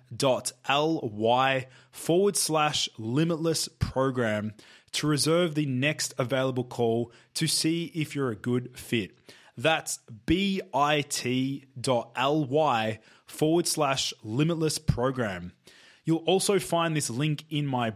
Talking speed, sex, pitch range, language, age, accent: 115 wpm, male, 110-140 Hz, English, 20-39, Australian